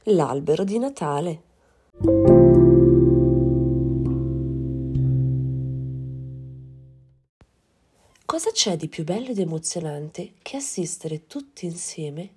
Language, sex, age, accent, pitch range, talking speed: Italian, female, 30-49, native, 150-210 Hz, 70 wpm